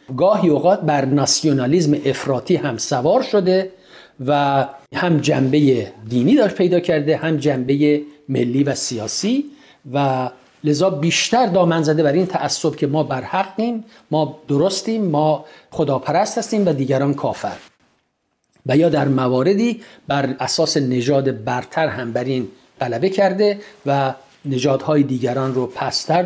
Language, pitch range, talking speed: Persian, 135-180 Hz, 125 wpm